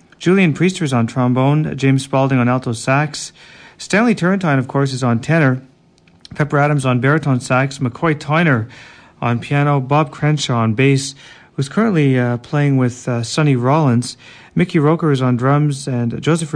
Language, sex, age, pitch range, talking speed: English, male, 40-59, 120-145 Hz, 165 wpm